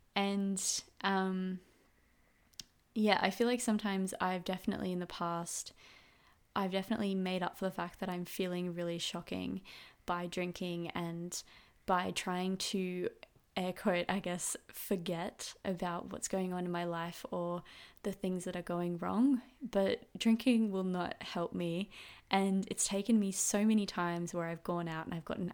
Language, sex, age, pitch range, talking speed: English, female, 20-39, 175-200 Hz, 160 wpm